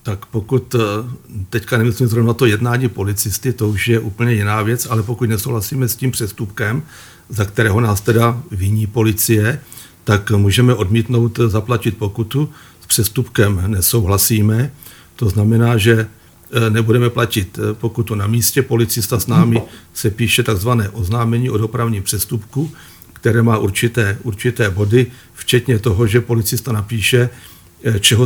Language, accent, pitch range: Czech, native, 110-125 Hz